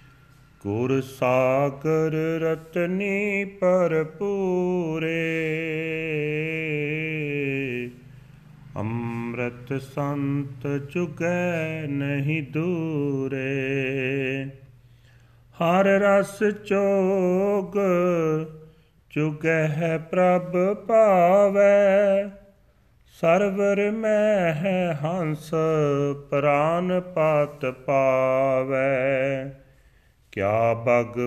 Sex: male